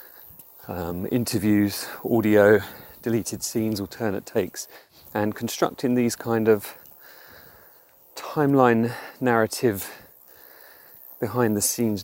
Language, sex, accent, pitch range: English, male, British, 105-125 Hz